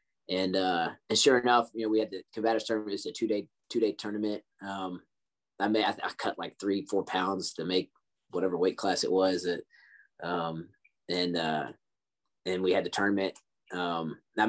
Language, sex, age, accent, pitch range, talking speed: English, male, 20-39, American, 95-125 Hz, 180 wpm